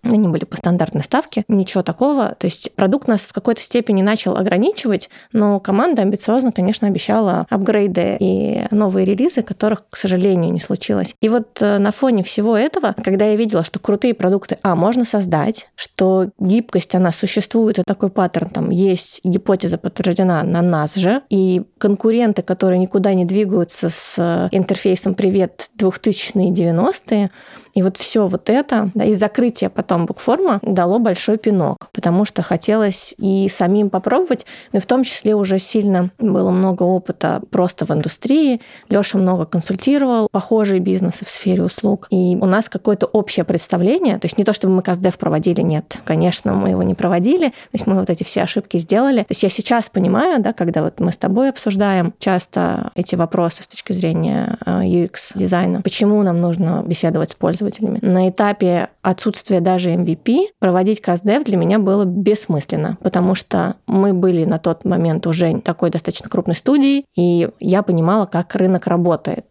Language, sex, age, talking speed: Russian, female, 20-39, 165 wpm